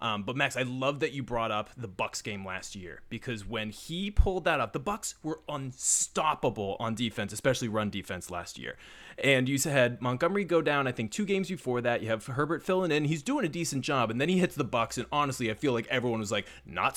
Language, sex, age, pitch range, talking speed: English, male, 30-49, 110-155 Hz, 240 wpm